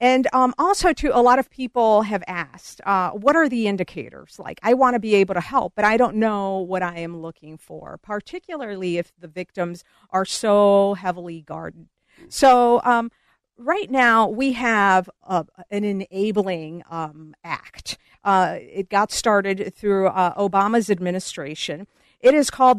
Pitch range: 180-240 Hz